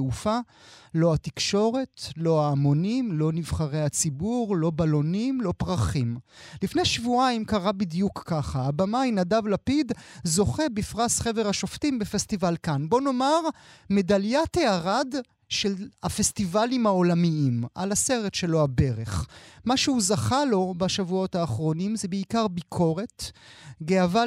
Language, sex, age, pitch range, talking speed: Hebrew, male, 30-49, 160-225 Hz, 120 wpm